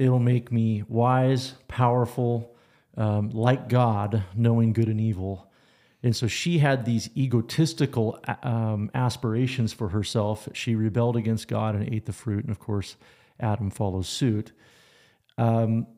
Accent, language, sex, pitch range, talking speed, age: American, English, male, 110-125 Hz, 140 wpm, 40-59